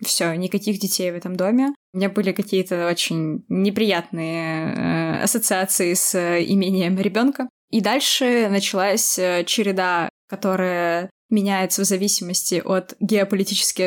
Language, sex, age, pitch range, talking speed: Russian, female, 20-39, 180-220 Hz, 120 wpm